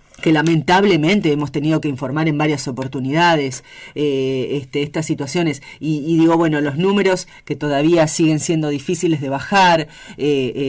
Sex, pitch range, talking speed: female, 140-170 Hz, 150 wpm